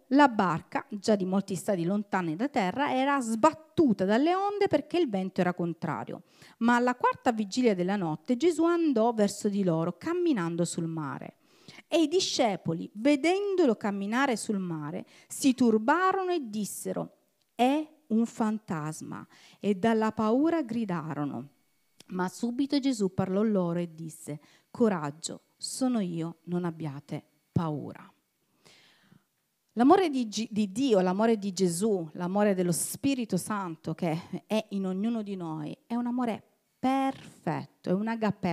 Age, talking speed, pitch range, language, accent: 40-59, 135 wpm, 180-250 Hz, Italian, native